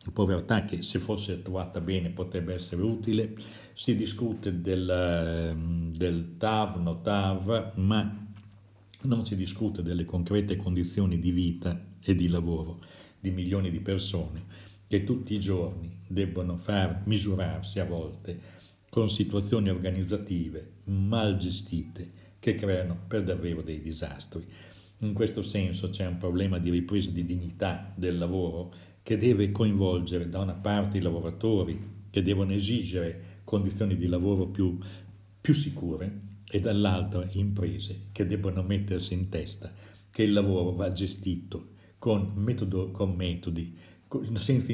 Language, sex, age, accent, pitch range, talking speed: Italian, male, 60-79, native, 90-105 Hz, 130 wpm